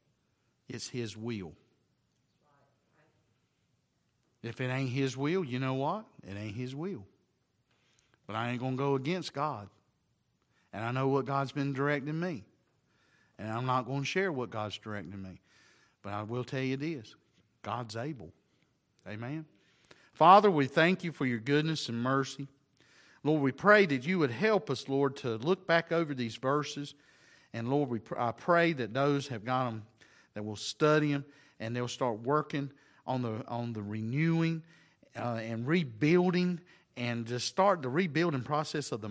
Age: 50-69